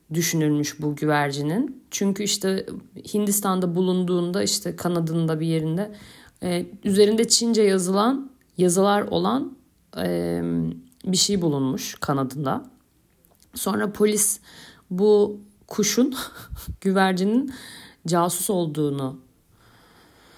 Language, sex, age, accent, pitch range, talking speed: Turkish, female, 50-69, native, 165-220 Hz, 85 wpm